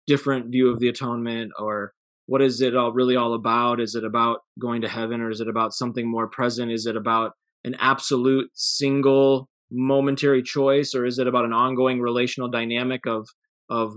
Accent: American